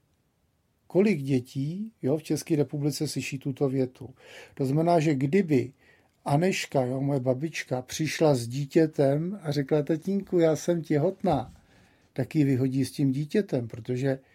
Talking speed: 140 wpm